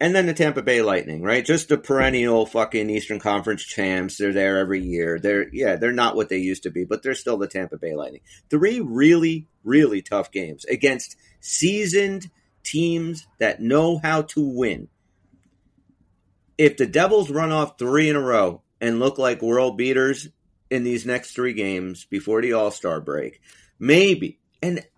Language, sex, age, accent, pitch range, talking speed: English, male, 30-49, American, 105-160 Hz, 175 wpm